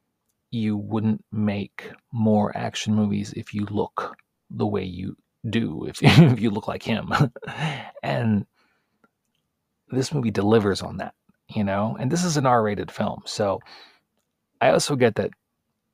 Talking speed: 145 wpm